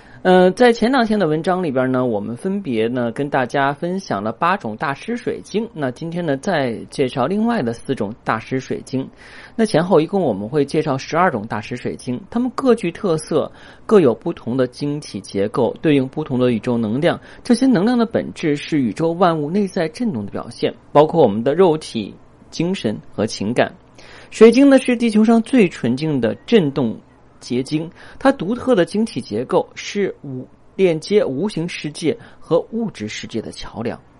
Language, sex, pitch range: Chinese, male, 130-210 Hz